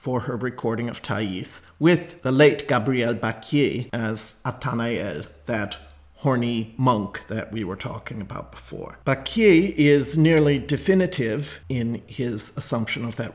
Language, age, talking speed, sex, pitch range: English, 40-59, 135 wpm, male, 115-150 Hz